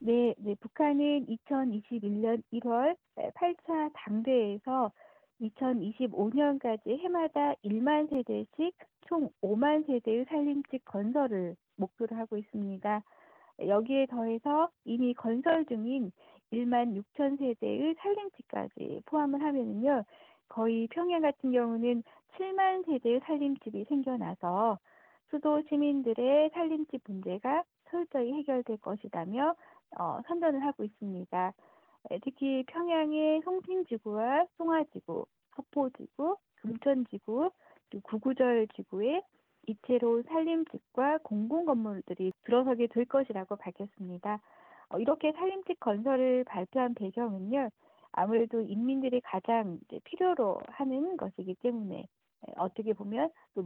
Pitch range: 220-300 Hz